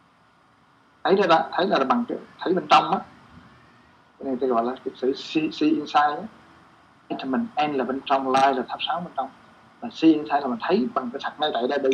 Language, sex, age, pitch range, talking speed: Vietnamese, male, 20-39, 120-180 Hz, 240 wpm